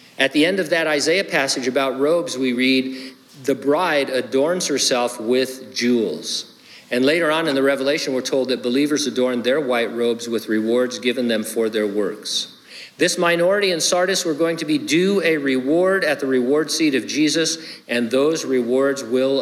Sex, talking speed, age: male, 180 wpm, 50-69